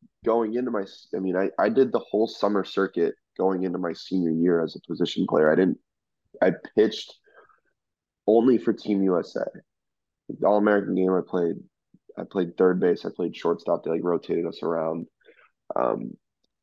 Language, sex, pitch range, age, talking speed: English, male, 90-105 Hz, 20-39, 170 wpm